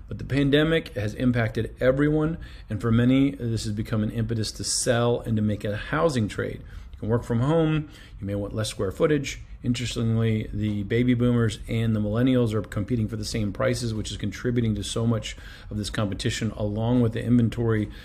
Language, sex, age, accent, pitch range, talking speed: English, male, 40-59, American, 105-120 Hz, 195 wpm